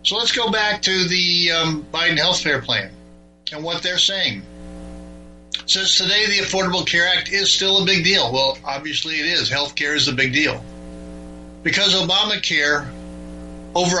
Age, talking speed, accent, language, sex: 60-79, 165 wpm, American, English, male